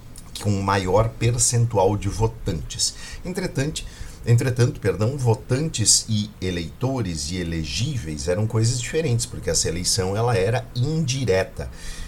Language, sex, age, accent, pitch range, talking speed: Portuguese, male, 50-69, Brazilian, 85-115 Hz, 105 wpm